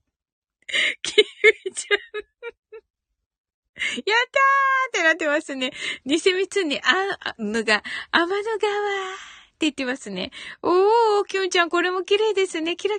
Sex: female